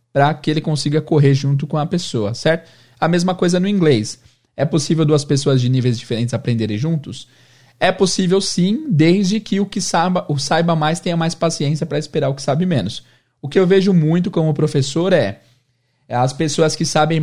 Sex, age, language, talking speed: male, 20-39, Portuguese, 195 wpm